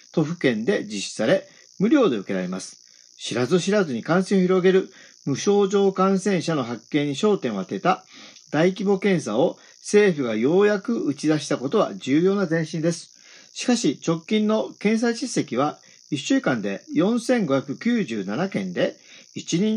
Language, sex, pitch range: Japanese, male, 160-205 Hz